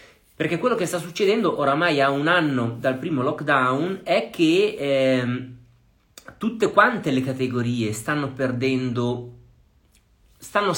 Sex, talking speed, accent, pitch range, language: male, 120 wpm, native, 125-160 Hz, Italian